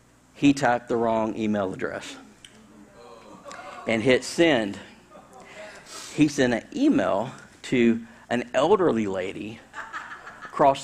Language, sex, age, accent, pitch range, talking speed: English, male, 50-69, American, 110-135 Hz, 100 wpm